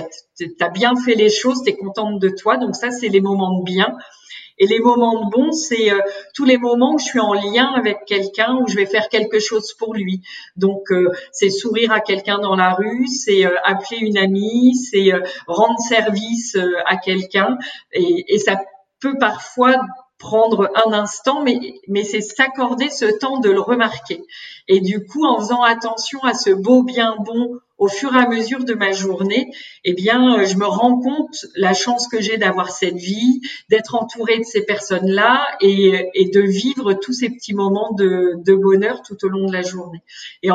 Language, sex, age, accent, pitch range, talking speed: French, female, 50-69, French, 195-240 Hz, 200 wpm